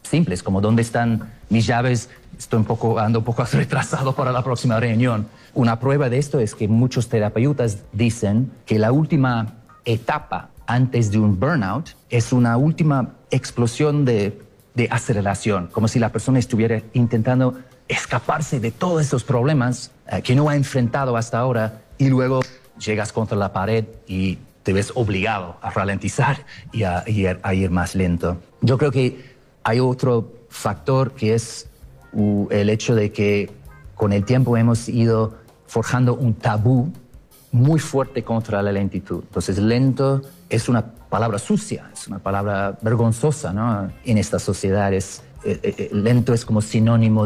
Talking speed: 155 wpm